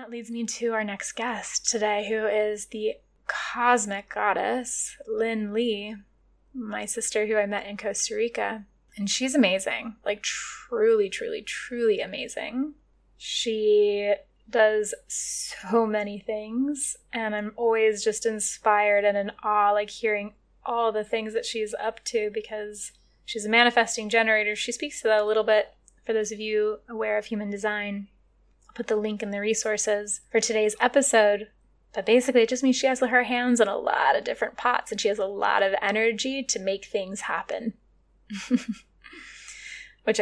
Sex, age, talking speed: female, 20-39, 165 wpm